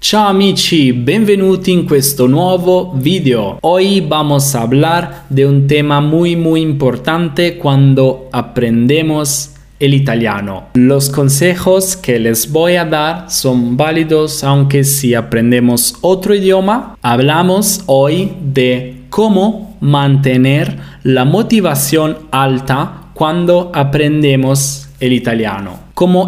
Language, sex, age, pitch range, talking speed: Italian, male, 20-39, 135-175 Hz, 110 wpm